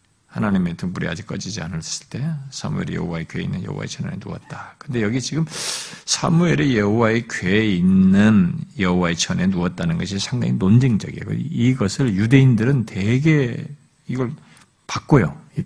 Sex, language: male, Korean